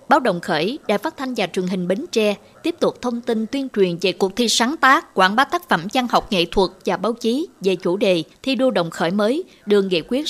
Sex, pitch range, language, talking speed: female, 185-250 Hz, Vietnamese, 255 wpm